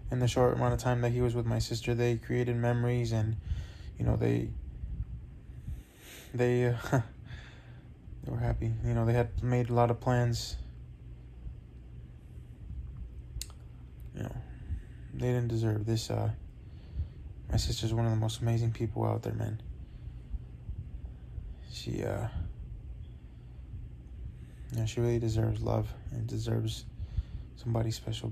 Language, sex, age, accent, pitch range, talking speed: English, male, 20-39, American, 110-120 Hz, 130 wpm